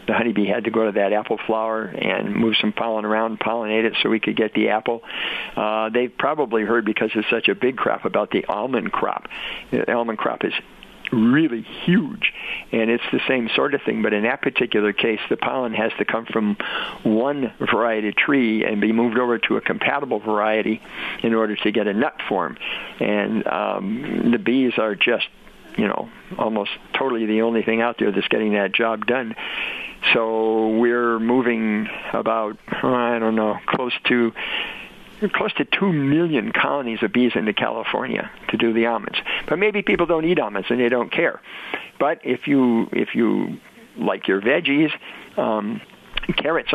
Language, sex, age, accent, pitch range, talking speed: English, male, 50-69, American, 110-120 Hz, 185 wpm